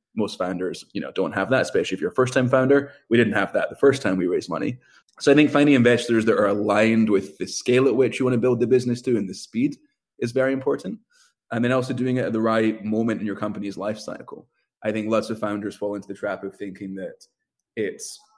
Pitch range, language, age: 100-130 Hz, English, 20-39